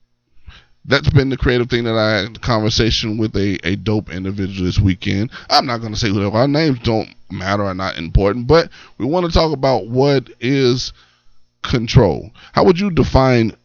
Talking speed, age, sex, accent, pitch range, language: 190 wpm, 20-39, male, American, 90-110 Hz, English